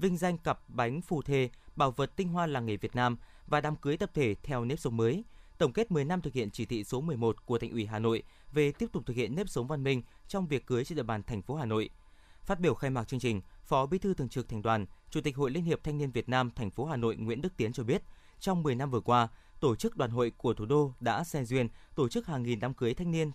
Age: 20-39